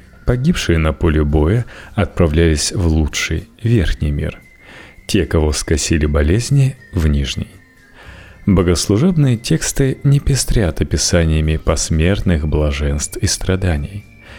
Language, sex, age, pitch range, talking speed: Russian, male, 30-49, 80-105 Hz, 105 wpm